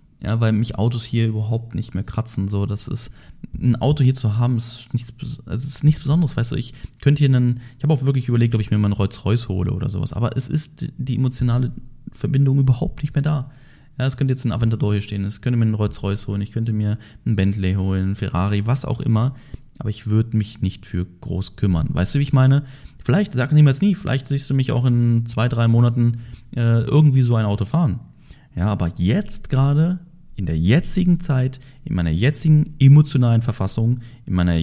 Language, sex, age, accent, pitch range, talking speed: German, male, 30-49, German, 100-135 Hz, 220 wpm